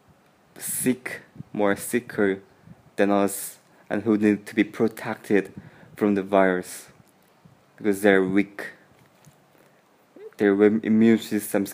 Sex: male